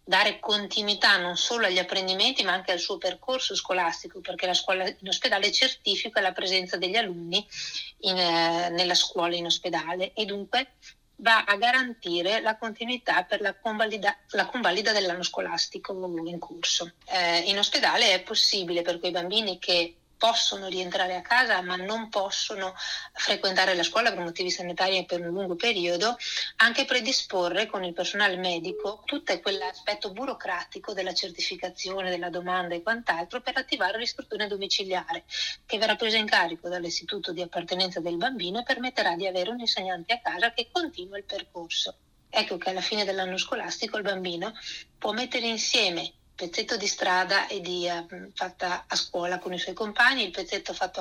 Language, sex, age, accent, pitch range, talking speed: Italian, female, 30-49, native, 180-225 Hz, 160 wpm